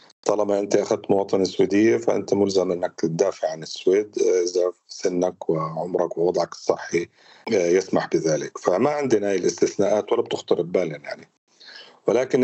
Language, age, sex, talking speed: Arabic, 40-59, male, 130 wpm